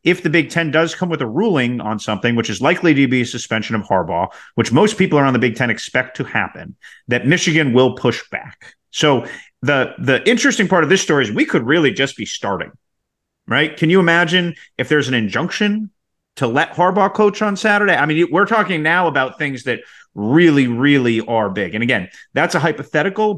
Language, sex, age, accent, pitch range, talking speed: English, male, 30-49, American, 120-160 Hz, 210 wpm